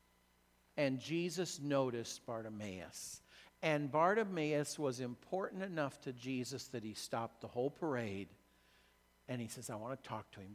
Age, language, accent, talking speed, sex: 50-69, English, American, 150 wpm, male